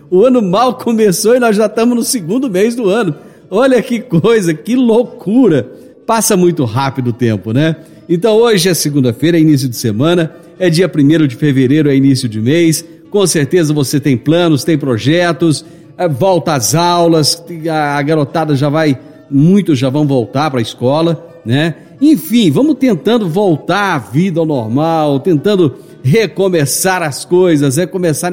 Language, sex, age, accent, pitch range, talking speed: Portuguese, male, 50-69, Brazilian, 145-195 Hz, 165 wpm